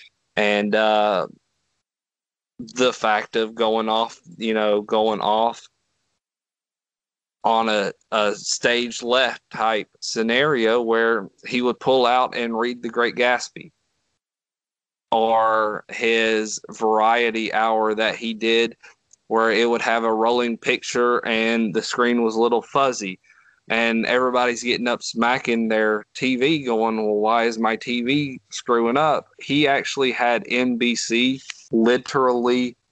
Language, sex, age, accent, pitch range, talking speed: English, male, 20-39, American, 110-120 Hz, 125 wpm